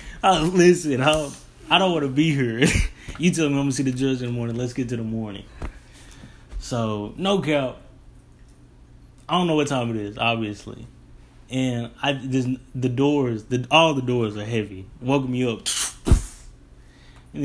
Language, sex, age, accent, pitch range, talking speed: English, male, 20-39, American, 120-150 Hz, 185 wpm